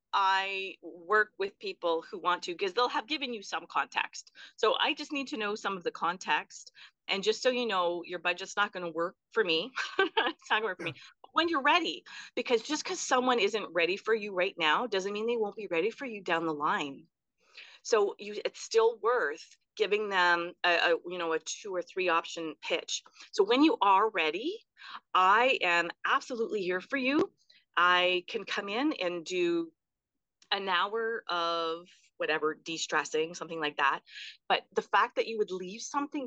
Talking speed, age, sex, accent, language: 195 wpm, 40-59, female, American, English